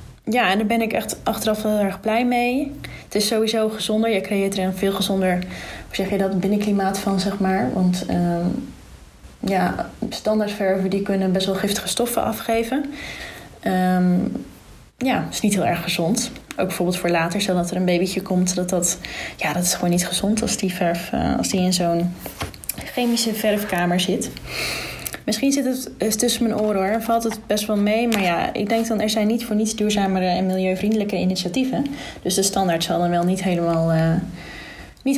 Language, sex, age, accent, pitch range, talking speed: Dutch, female, 20-39, Dutch, 185-225 Hz, 190 wpm